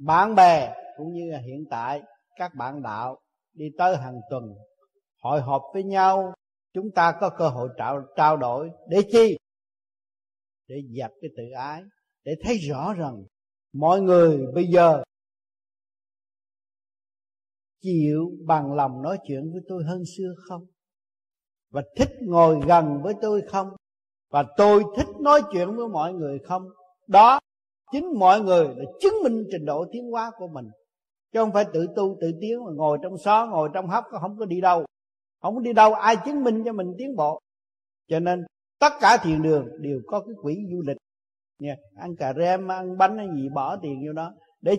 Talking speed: 180 wpm